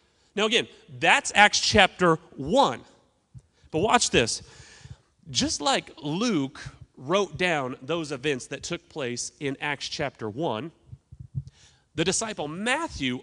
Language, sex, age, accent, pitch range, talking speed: English, male, 30-49, American, 135-215 Hz, 120 wpm